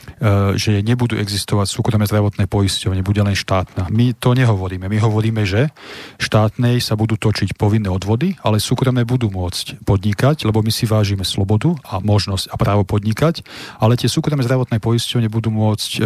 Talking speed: 160 wpm